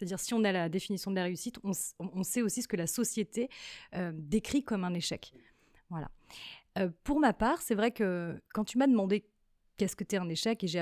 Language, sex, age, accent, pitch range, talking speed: French, female, 30-49, French, 185-225 Hz, 235 wpm